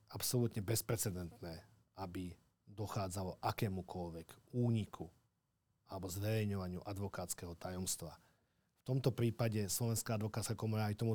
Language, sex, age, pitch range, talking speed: Slovak, male, 40-59, 100-120 Hz, 95 wpm